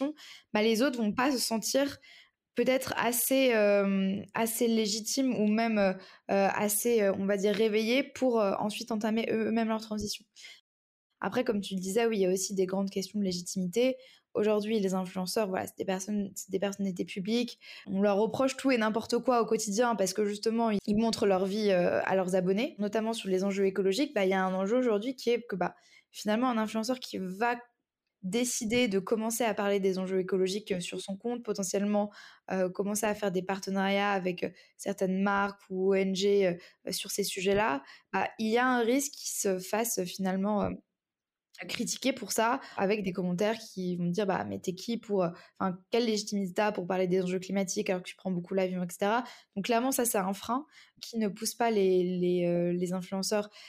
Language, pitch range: French, 195-235 Hz